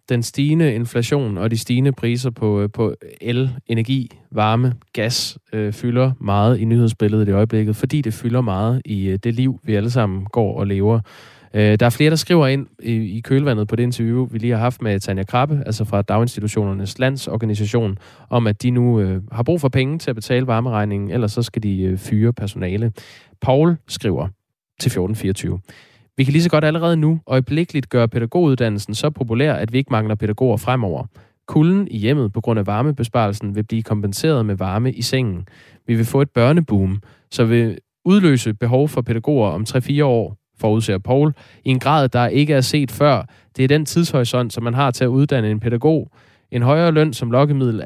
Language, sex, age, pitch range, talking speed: Danish, male, 20-39, 105-135 Hz, 195 wpm